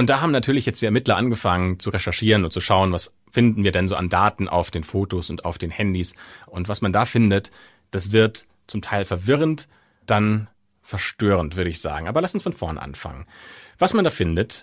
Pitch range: 95-125 Hz